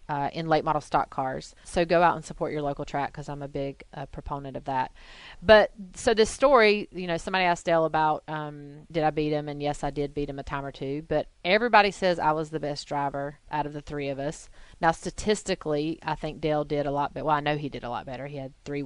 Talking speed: 260 wpm